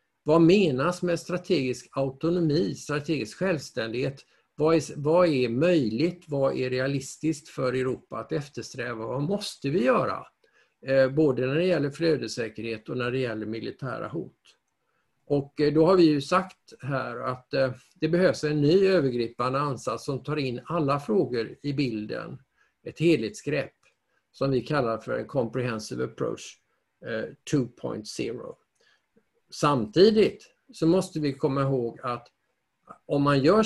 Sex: male